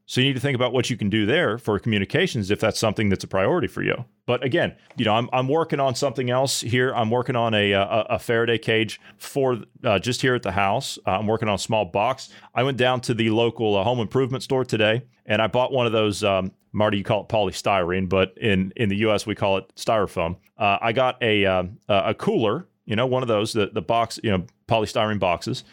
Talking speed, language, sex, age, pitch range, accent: 245 wpm, English, male, 30-49, 105-130 Hz, American